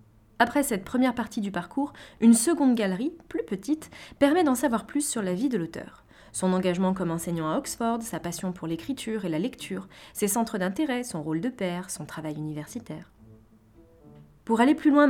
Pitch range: 180-255 Hz